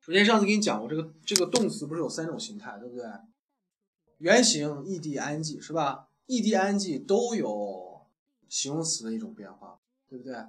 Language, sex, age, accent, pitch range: Chinese, male, 20-39, native, 140-210 Hz